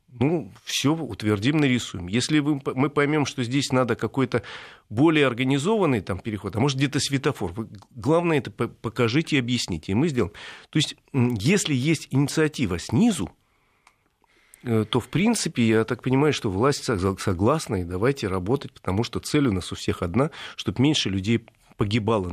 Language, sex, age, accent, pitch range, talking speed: Russian, male, 40-59, native, 105-135 Hz, 150 wpm